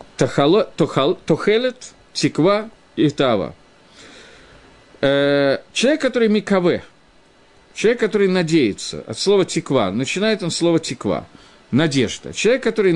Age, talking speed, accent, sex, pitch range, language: 50-69, 95 wpm, native, male, 135-195 Hz, Russian